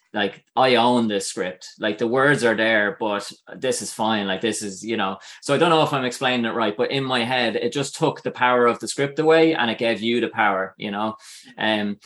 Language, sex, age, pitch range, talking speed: English, male, 20-39, 110-135 Hz, 250 wpm